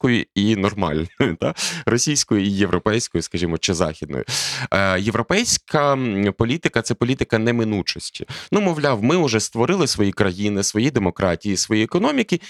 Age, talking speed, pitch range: 30-49, 120 wpm, 100-130 Hz